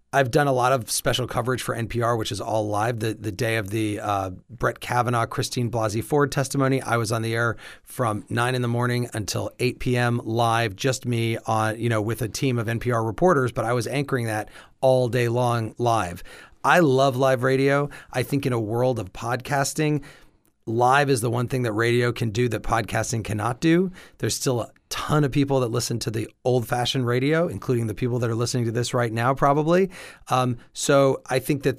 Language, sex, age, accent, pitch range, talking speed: English, male, 30-49, American, 115-140 Hz, 210 wpm